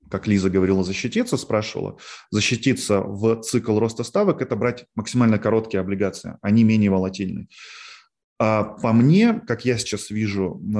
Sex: male